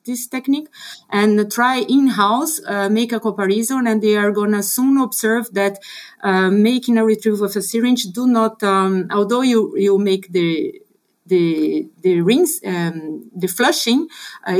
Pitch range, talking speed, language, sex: 195-240 Hz, 155 wpm, English, female